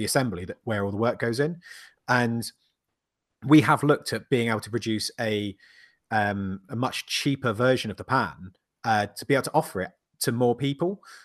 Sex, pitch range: male, 105-130 Hz